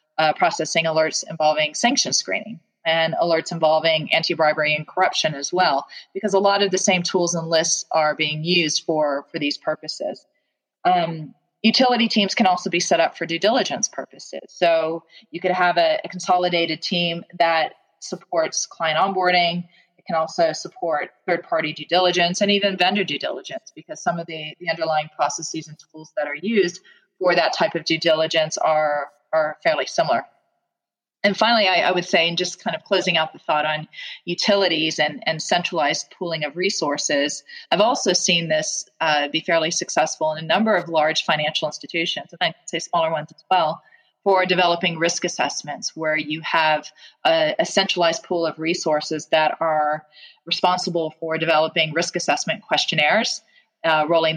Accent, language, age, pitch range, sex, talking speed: American, English, 30-49, 155-185 Hz, female, 170 wpm